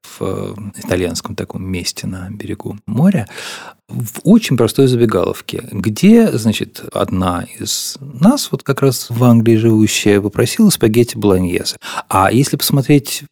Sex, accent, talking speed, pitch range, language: male, native, 125 wpm, 95-130 Hz, Russian